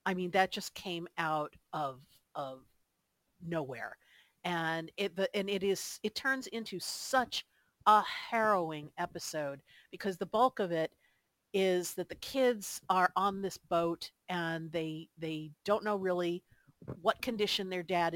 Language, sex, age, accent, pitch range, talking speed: English, female, 50-69, American, 160-200 Hz, 145 wpm